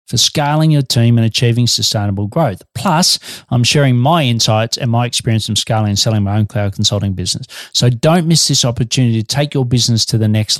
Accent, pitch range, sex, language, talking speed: Australian, 110-140 Hz, male, English, 210 wpm